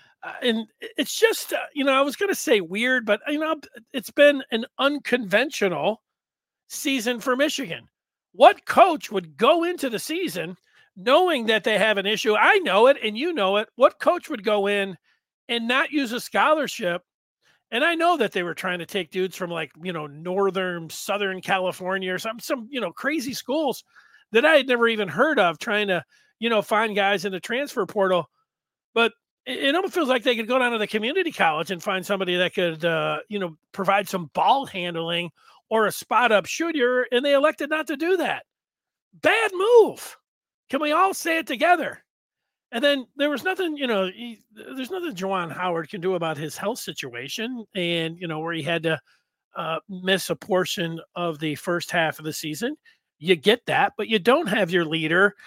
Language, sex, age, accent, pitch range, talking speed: English, male, 40-59, American, 185-285 Hz, 195 wpm